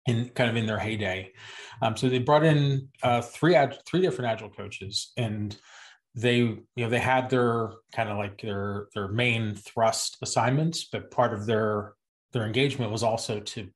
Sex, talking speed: male, 180 wpm